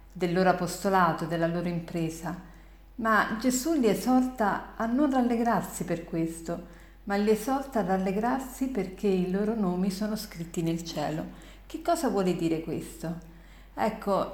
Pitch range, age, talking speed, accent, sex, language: 175-215 Hz, 50-69, 140 wpm, native, female, Italian